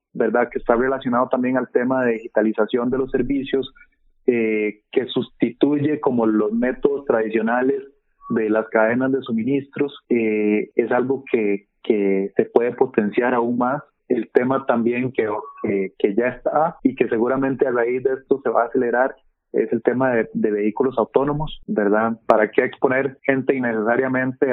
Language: Spanish